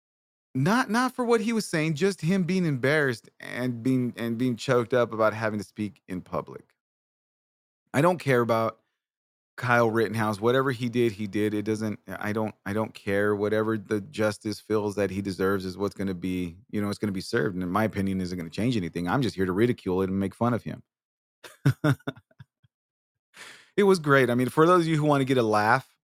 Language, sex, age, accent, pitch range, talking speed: English, male, 30-49, American, 110-160 Hz, 220 wpm